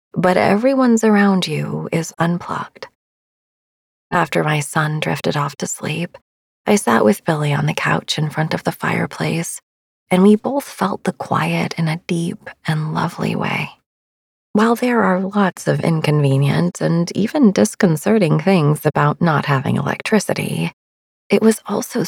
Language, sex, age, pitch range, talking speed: English, female, 30-49, 150-205 Hz, 145 wpm